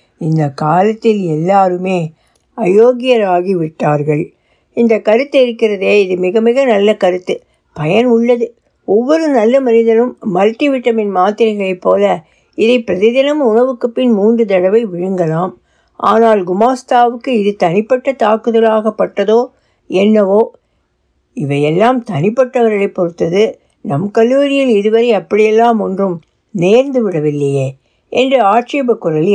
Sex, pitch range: female, 185-245 Hz